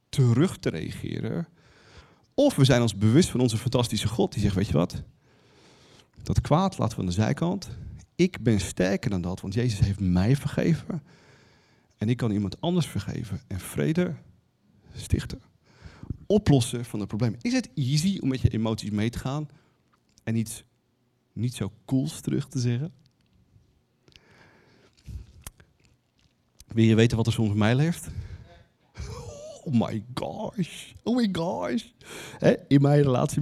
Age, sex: 40-59, male